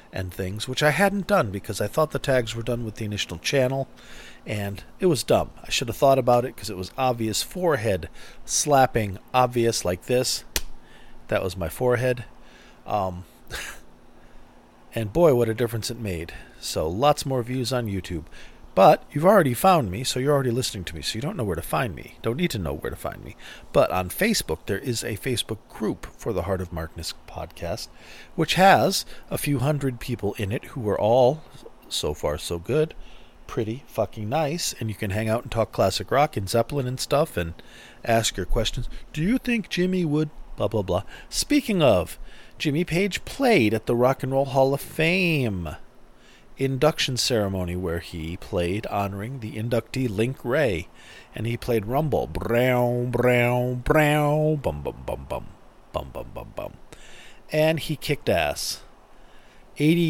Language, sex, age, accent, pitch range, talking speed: English, male, 40-59, American, 100-140 Hz, 180 wpm